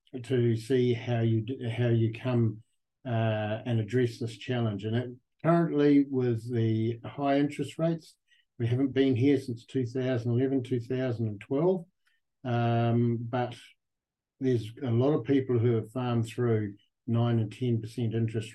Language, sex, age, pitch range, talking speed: English, male, 50-69, 115-135 Hz, 135 wpm